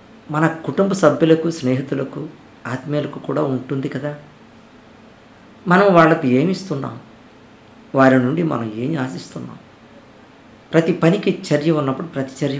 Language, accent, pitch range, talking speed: Telugu, native, 125-160 Hz, 110 wpm